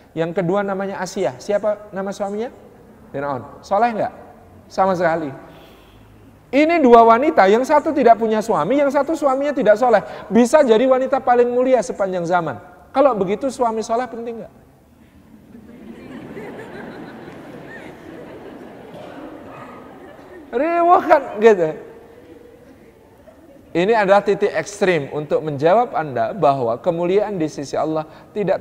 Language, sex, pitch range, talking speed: Indonesian, male, 150-230 Hz, 110 wpm